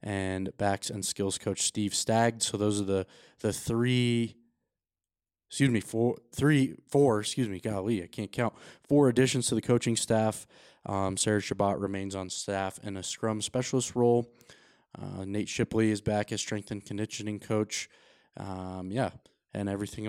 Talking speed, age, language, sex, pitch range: 165 wpm, 20-39, English, male, 100-115 Hz